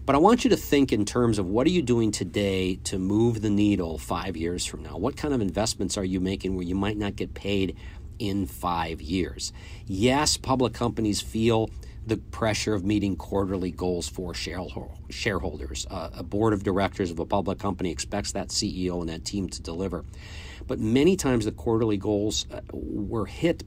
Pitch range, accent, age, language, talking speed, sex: 90-115 Hz, American, 50-69, English, 190 wpm, male